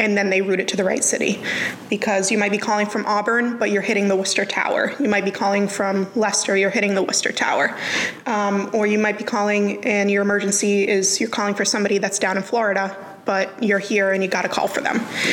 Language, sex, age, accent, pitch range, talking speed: English, female, 20-39, American, 200-240 Hz, 235 wpm